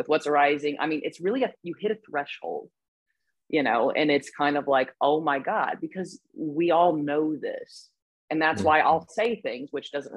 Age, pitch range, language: 30-49, 135-155 Hz, English